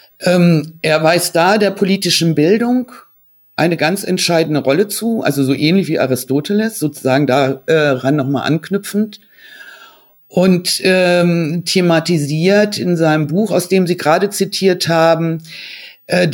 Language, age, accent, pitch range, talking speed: German, 60-79, German, 145-190 Hz, 130 wpm